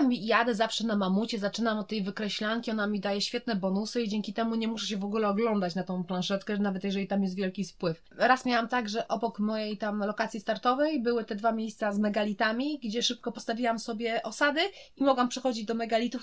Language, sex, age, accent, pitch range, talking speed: Polish, female, 20-39, native, 200-235 Hz, 210 wpm